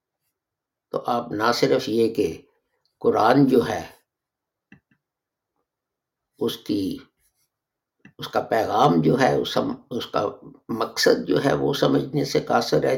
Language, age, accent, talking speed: English, 60-79, Indian, 105 wpm